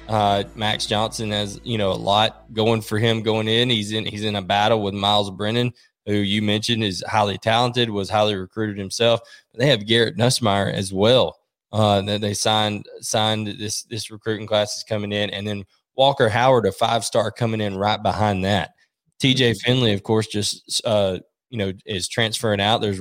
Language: English